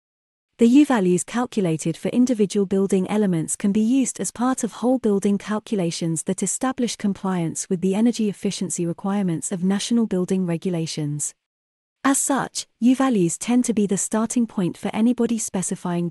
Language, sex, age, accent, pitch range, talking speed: English, female, 30-49, British, 175-230 Hz, 155 wpm